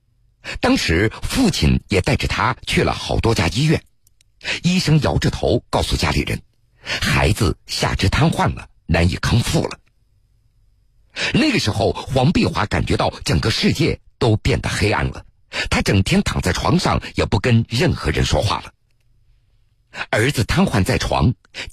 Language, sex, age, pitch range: Chinese, male, 50-69, 100-140 Hz